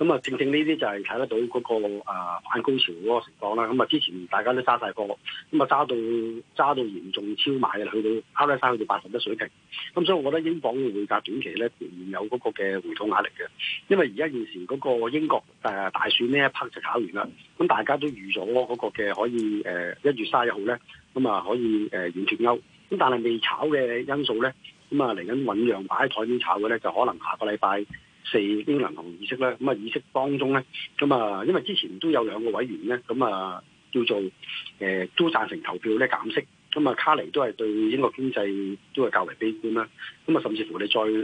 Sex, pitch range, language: male, 105-135 Hz, Chinese